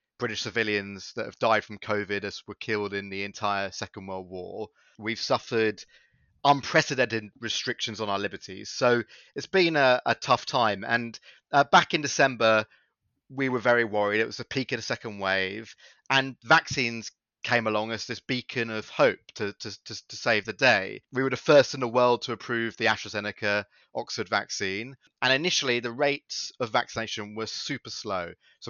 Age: 30-49